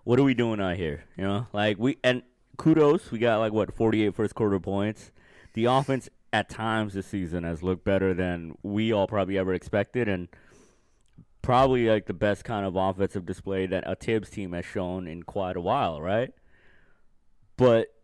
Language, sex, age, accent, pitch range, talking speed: English, male, 20-39, American, 95-115 Hz, 190 wpm